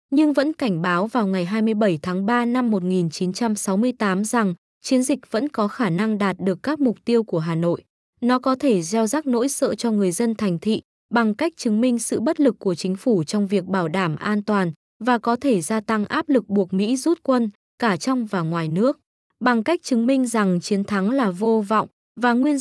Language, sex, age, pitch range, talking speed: Vietnamese, female, 20-39, 190-245 Hz, 220 wpm